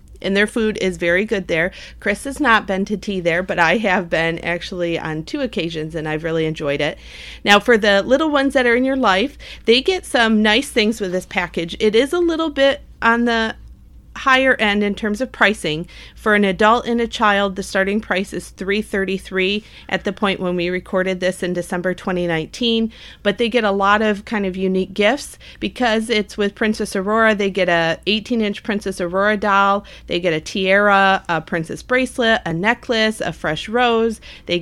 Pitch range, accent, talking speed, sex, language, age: 175-220 Hz, American, 200 wpm, female, English, 40-59